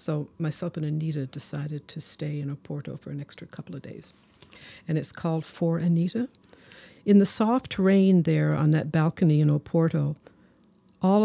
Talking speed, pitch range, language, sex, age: 165 wpm, 155-180 Hz, English, female, 60-79